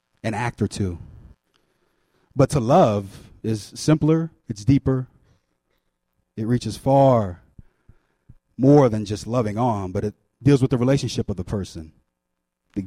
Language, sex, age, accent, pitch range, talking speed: English, male, 30-49, American, 100-145 Hz, 130 wpm